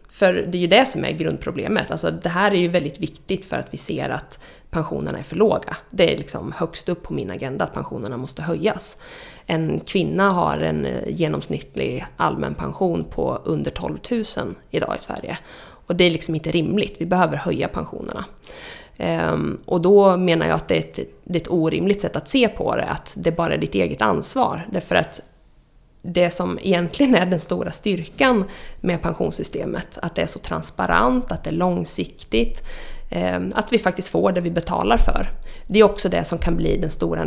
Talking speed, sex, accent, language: 190 wpm, female, native, Swedish